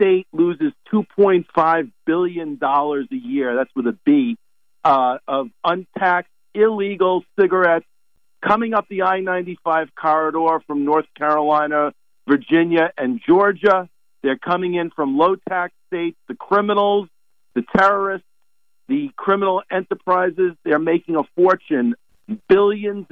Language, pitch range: English, 145-200 Hz